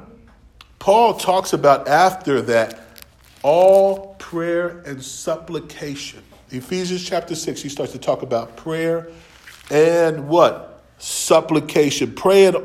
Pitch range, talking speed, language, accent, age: 120-165 Hz, 105 wpm, English, American, 40-59